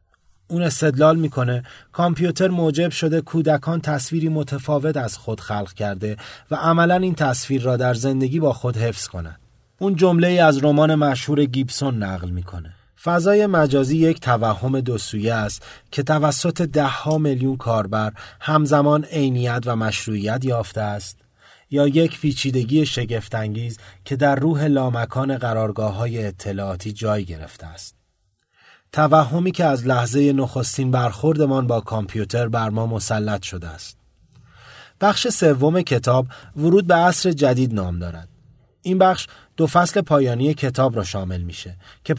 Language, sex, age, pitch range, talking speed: Persian, male, 30-49, 110-155 Hz, 140 wpm